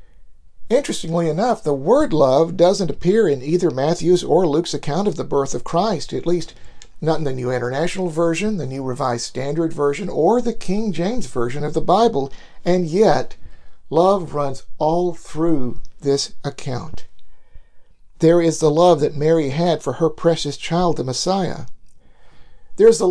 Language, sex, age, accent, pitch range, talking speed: English, male, 50-69, American, 145-180 Hz, 165 wpm